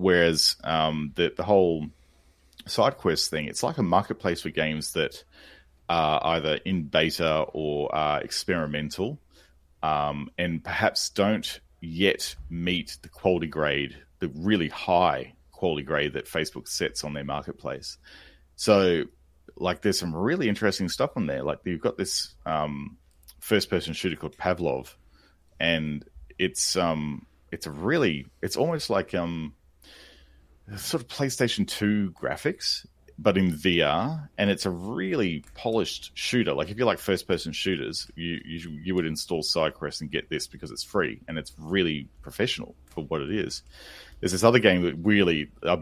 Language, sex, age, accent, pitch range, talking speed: English, male, 30-49, Australian, 75-95 Hz, 155 wpm